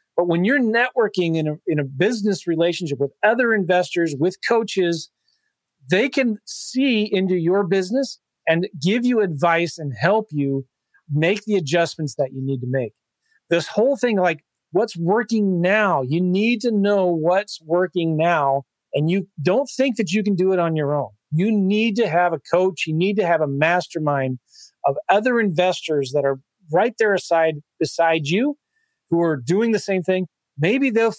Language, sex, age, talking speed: English, male, 40-59, 175 wpm